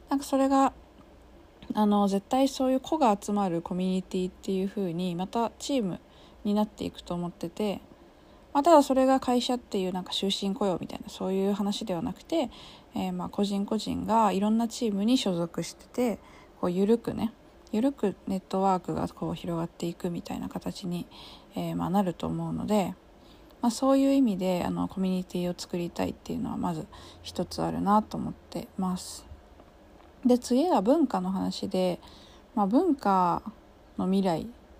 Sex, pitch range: female, 185-245 Hz